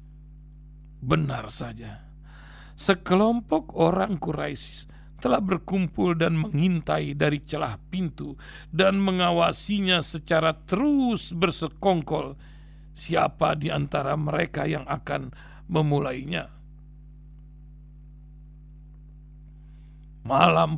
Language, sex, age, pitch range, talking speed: Indonesian, male, 50-69, 150-185 Hz, 70 wpm